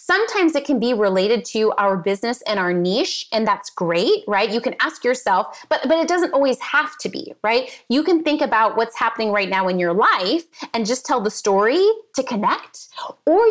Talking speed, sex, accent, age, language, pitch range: 210 wpm, female, American, 30-49, English, 205-295 Hz